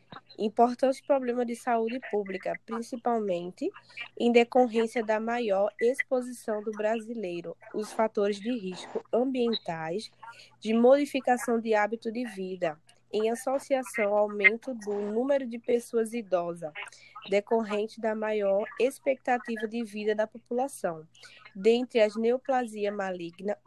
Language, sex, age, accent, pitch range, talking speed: Portuguese, female, 10-29, Brazilian, 210-245 Hz, 115 wpm